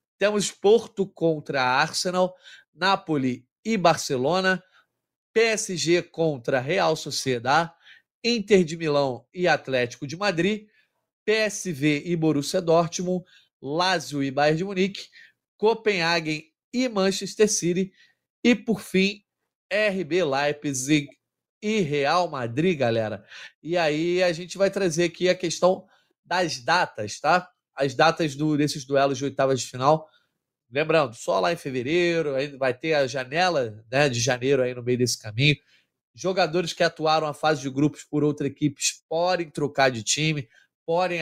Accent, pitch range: Brazilian, 135-180 Hz